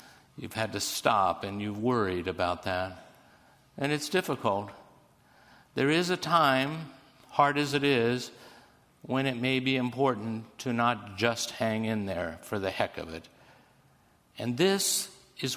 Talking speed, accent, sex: 150 wpm, American, male